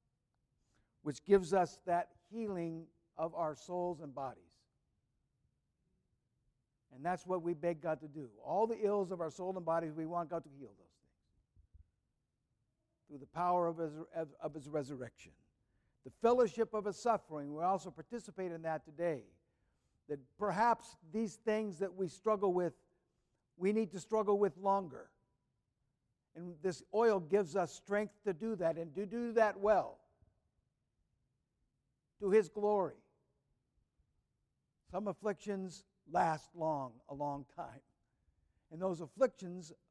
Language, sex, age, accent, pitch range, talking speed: English, male, 60-79, American, 145-205 Hz, 140 wpm